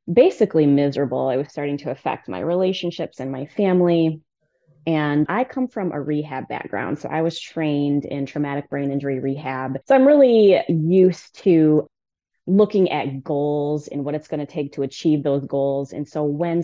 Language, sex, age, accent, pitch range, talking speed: English, female, 20-39, American, 145-190 Hz, 175 wpm